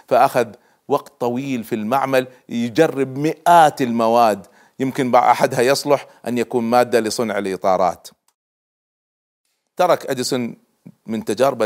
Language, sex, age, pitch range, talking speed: Arabic, male, 40-59, 120-155 Hz, 105 wpm